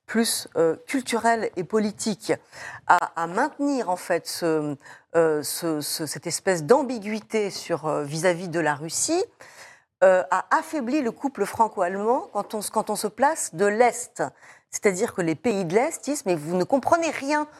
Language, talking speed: French, 165 wpm